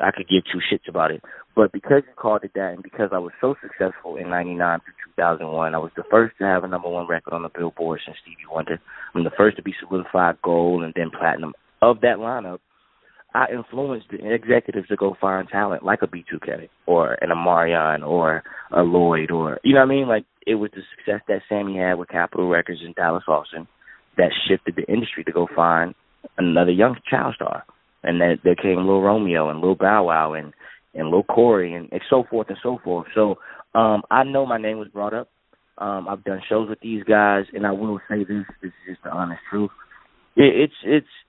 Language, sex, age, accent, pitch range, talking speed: English, male, 20-39, American, 85-110 Hz, 230 wpm